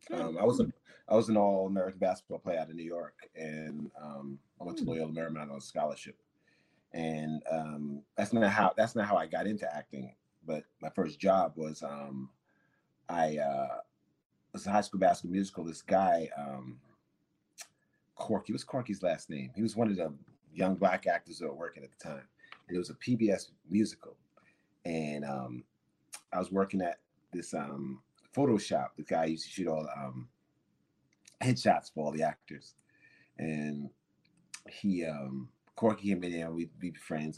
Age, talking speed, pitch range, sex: 30-49, 175 wpm, 75-95 Hz, male